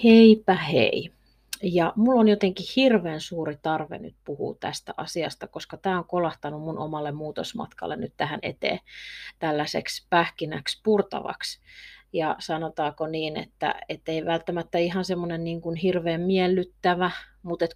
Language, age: Finnish, 30-49